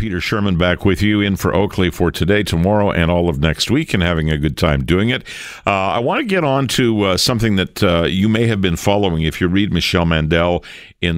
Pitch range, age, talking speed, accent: 80-95 Hz, 50-69, 240 wpm, American